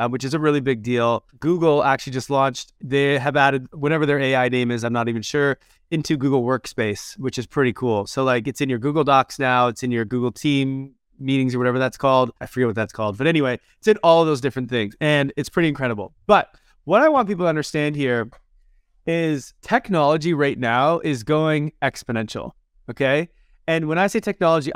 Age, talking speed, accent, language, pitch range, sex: 20-39, 210 wpm, American, English, 130-165 Hz, male